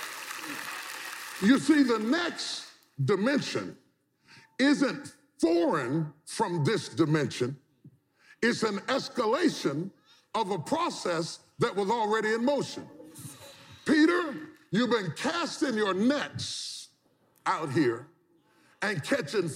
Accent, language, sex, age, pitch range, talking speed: American, English, female, 40-59, 195-310 Hz, 95 wpm